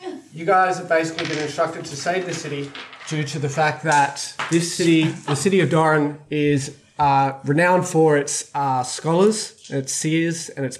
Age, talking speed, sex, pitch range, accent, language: 20-39, 180 wpm, male, 135-160 Hz, Australian, English